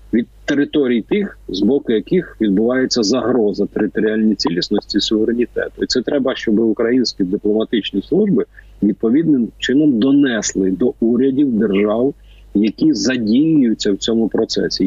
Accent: native